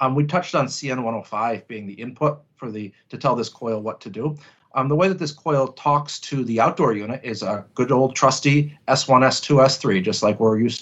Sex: male